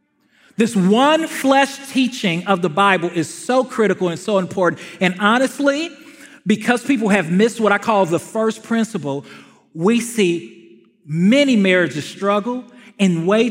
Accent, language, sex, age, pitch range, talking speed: American, English, male, 40-59, 155-210 Hz, 140 wpm